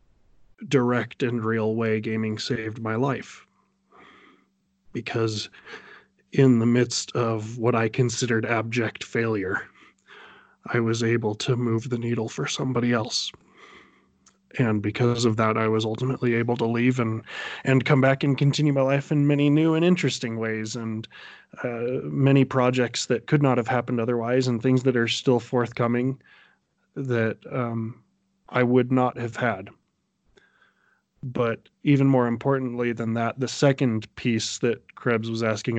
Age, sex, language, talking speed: 20-39, male, English, 150 wpm